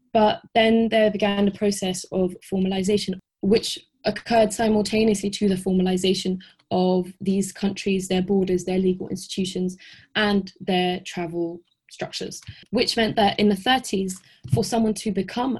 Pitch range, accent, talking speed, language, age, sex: 185-210 Hz, British, 140 wpm, English, 20-39, female